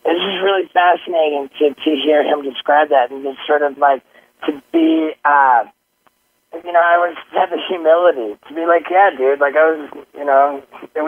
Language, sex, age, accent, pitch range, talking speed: English, male, 30-49, American, 130-160 Hz, 190 wpm